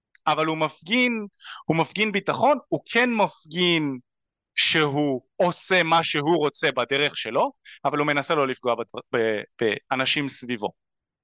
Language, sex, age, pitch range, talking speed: Hebrew, male, 30-49, 130-185 Hz, 125 wpm